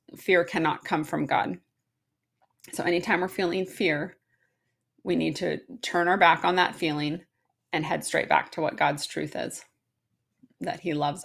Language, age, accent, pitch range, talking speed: English, 30-49, American, 155-180 Hz, 165 wpm